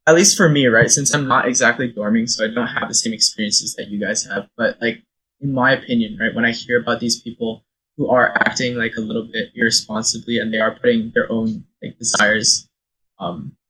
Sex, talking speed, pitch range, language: male, 220 wpm, 110-140 Hz, English